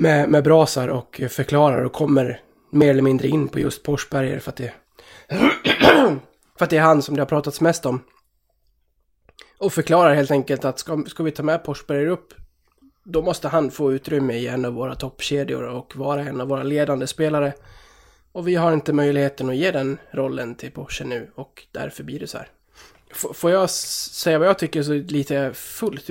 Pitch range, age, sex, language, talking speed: 135-155 Hz, 20-39, male, Swedish, 190 wpm